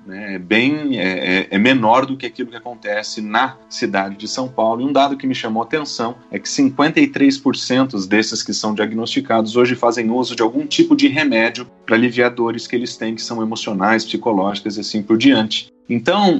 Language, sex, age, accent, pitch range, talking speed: Portuguese, male, 40-59, Brazilian, 110-170 Hz, 185 wpm